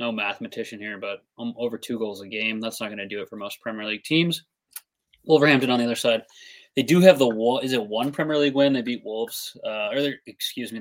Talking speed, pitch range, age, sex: 235 wpm, 105-125 Hz, 20-39, male